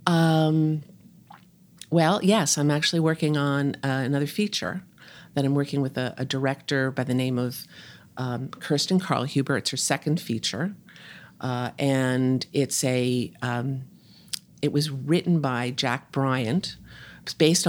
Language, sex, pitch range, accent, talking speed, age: English, female, 130-155 Hz, American, 140 wpm, 50-69